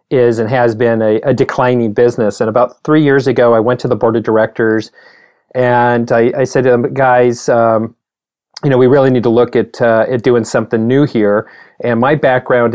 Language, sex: English, male